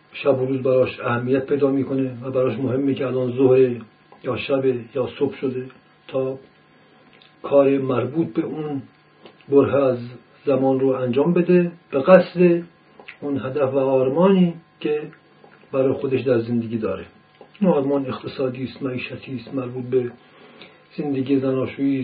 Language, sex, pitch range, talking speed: Persian, male, 130-155 Hz, 135 wpm